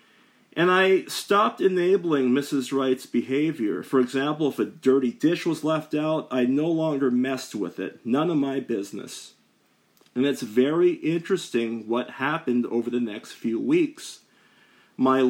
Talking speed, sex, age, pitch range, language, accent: 150 wpm, male, 40-59, 125-155 Hz, English, American